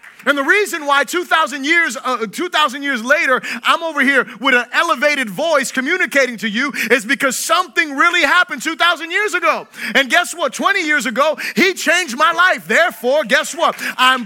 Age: 30-49